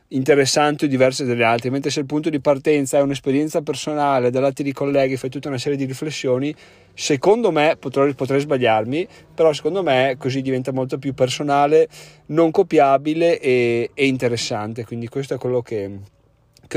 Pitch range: 120-145 Hz